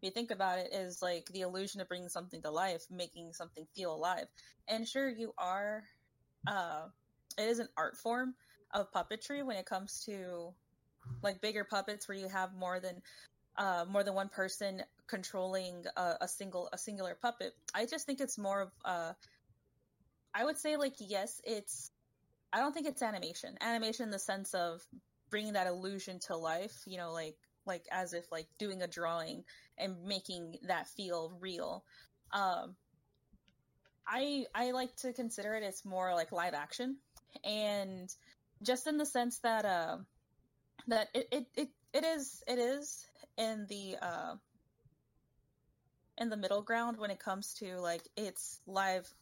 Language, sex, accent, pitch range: English, female, American, 180-235 Hz